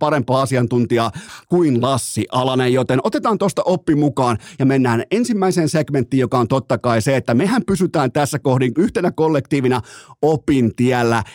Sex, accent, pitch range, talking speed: male, native, 130-180 Hz, 145 wpm